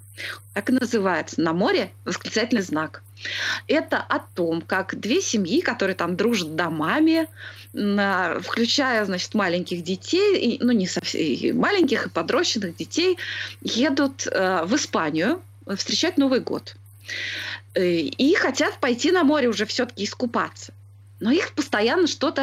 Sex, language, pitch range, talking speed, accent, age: female, Russian, 175-280 Hz, 120 wpm, native, 20-39